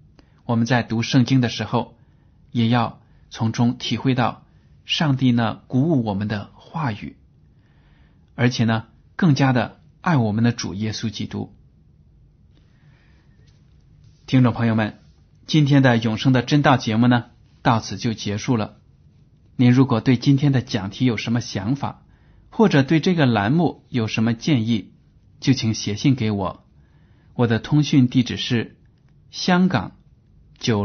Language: Chinese